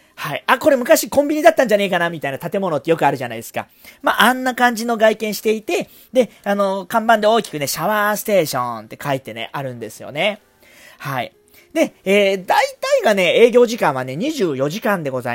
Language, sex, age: Japanese, male, 40-59